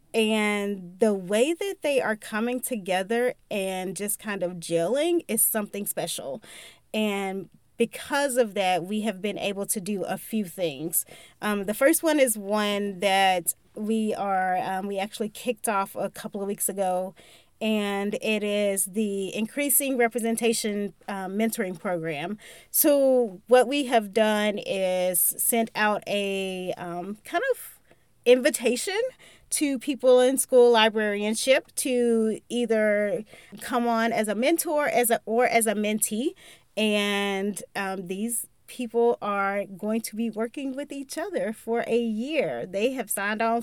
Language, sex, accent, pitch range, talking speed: English, female, American, 200-245 Hz, 150 wpm